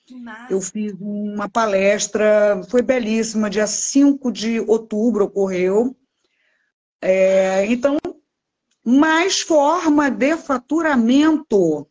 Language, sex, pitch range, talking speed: Portuguese, female, 210-285 Hz, 80 wpm